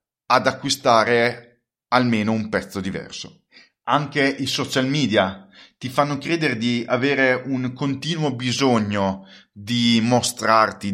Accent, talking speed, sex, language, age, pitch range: native, 110 wpm, male, Italian, 30-49, 105-130 Hz